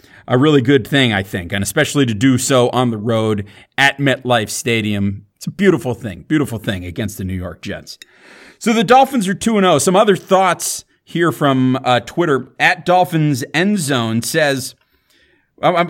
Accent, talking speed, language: American, 175 wpm, English